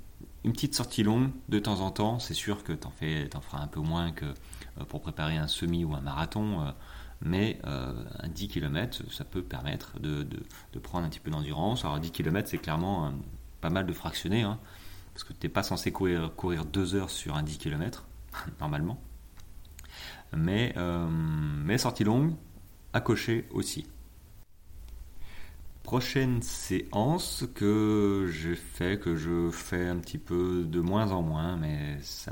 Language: French